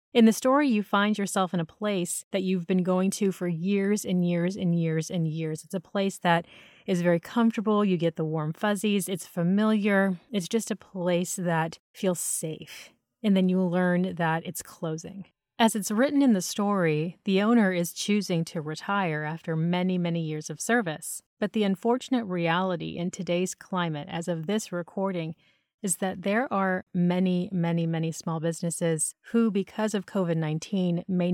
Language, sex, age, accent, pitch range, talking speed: English, female, 30-49, American, 165-200 Hz, 180 wpm